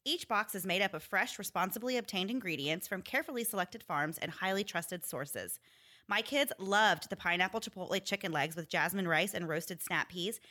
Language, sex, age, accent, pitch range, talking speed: English, female, 30-49, American, 170-220 Hz, 190 wpm